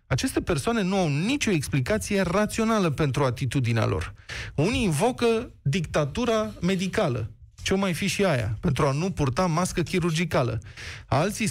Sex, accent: male, native